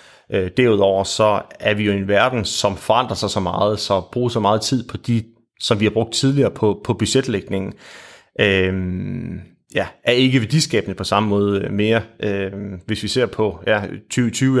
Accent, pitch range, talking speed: native, 100-120 Hz, 175 wpm